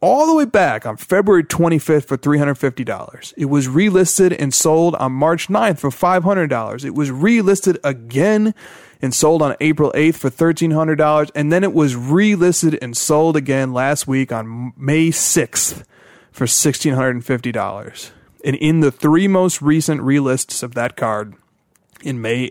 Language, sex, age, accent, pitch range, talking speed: English, male, 30-49, American, 125-160 Hz, 150 wpm